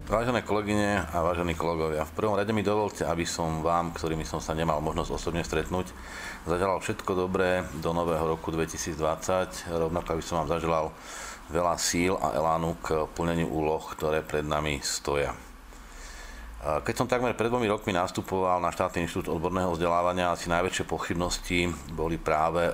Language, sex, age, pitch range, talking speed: Slovak, male, 40-59, 80-90 Hz, 160 wpm